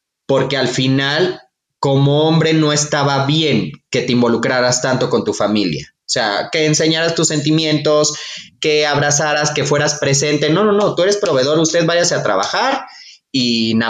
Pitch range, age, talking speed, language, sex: 135-160 Hz, 30-49, 165 wpm, Spanish, male